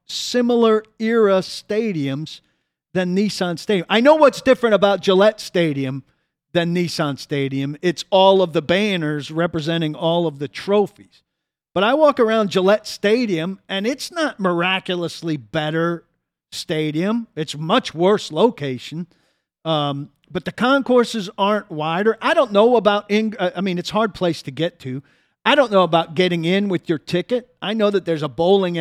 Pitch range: 170-235 Hz